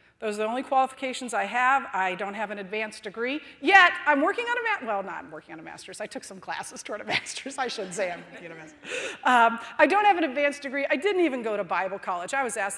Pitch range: 220-315 Hz